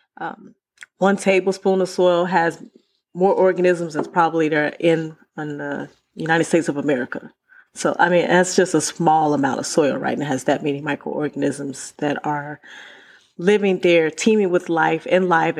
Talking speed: 170 wpm